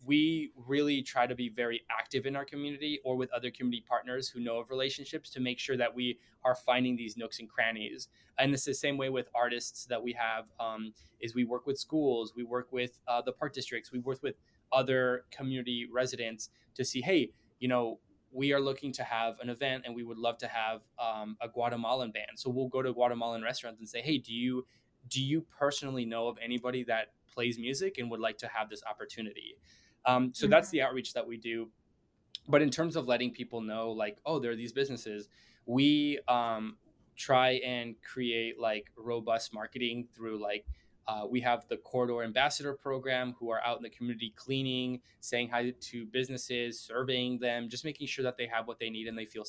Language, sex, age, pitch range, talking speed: English, male, 20-39, 115-130 Hz, 205 wpm